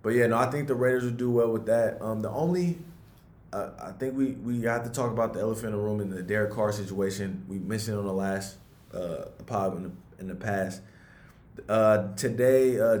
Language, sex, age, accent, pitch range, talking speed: English, male, 20-39, American, 100-125 Hz, 215 wpm